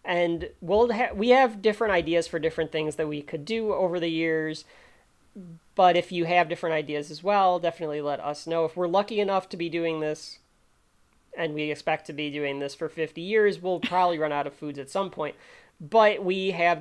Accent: American